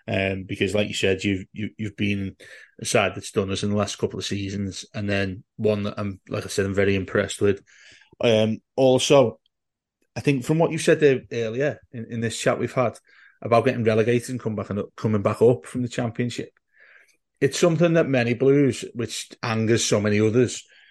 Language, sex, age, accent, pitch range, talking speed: English, male, 30-49, British, 105-130 Hz, 205 wpm